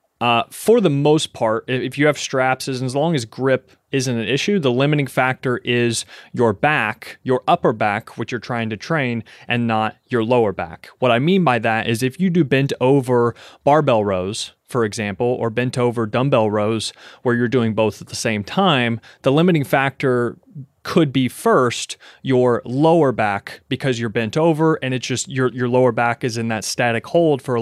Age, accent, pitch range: 30-49, American, 115-135 Hz